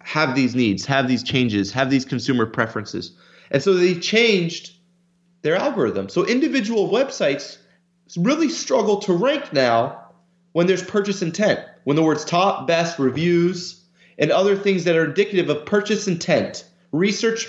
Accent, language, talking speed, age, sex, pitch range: American, English, 150 wpm, 30-49, male, 155-195 Hz